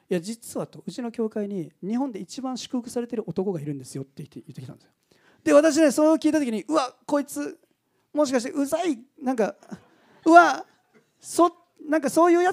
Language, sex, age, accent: Japanese, male, 40-59, native